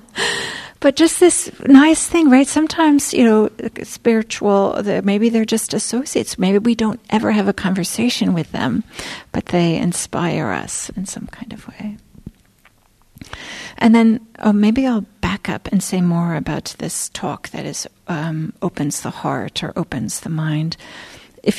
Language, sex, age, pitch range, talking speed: English, female, 40-59, 190-235 Hz, 155 wpm